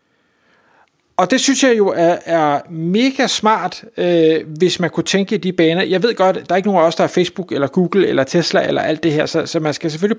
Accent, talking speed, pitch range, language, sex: native, 260 wpm, 155-190 Hz, Danish, male